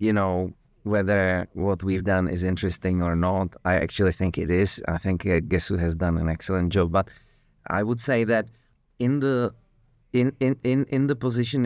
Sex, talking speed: male, 185 wpm